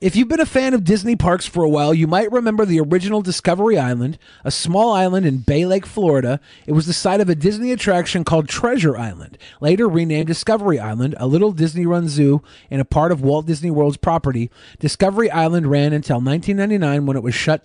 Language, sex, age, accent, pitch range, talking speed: English, male, 30-49, American, 145-195 Hz, 205 wpm